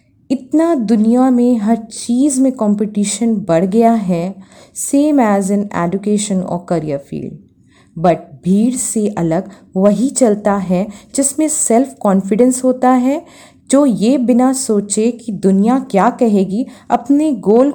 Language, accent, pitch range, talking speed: Hindi, native, 195-255 Hz, 130 wpm